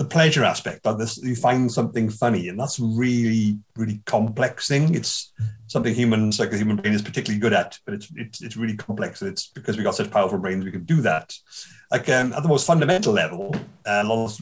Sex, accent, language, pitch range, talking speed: male, British, English, 105-125 Hz, 230 wpm